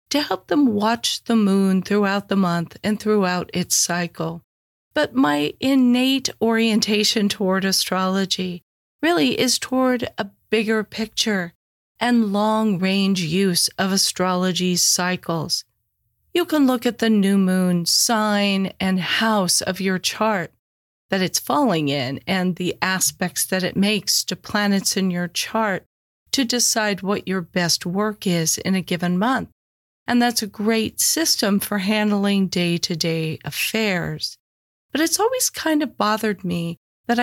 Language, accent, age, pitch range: English, American, 40-59, 175-235 Hz